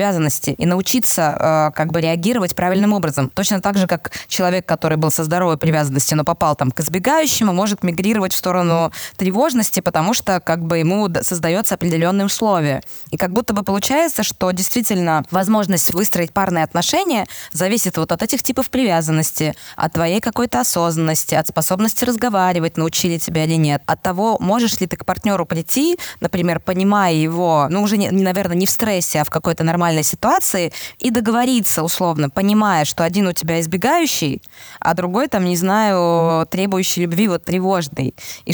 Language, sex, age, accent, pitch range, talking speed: Russian, female, 20-39, native, 170-210 Hz, 165 wpm